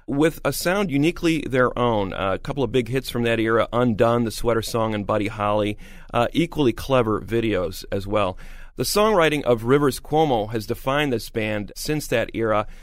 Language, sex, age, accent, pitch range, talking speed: English, male, 40-59, American, 110-150 Hz, 185 wpm